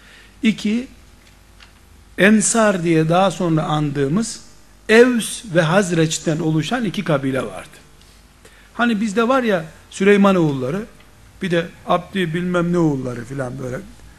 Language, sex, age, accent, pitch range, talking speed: Turkish, male, 60-79, native, 135-205 Hz, 115 wpm